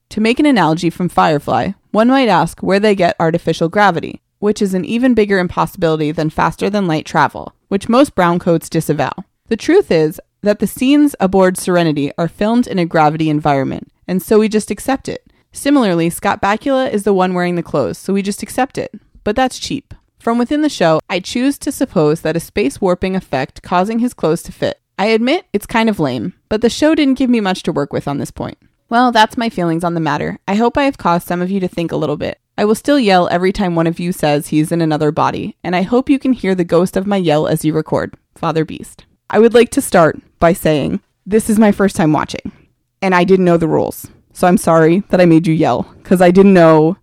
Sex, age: female, 20-39